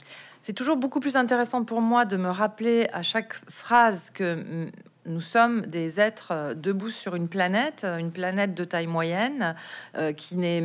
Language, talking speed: French, 170 wpm